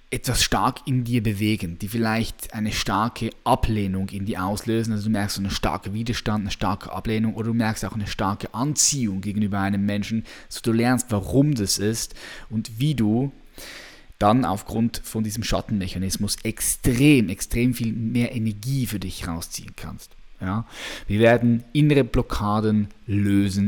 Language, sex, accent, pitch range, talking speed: German, male, German, 100-120 Hz, 155 wpm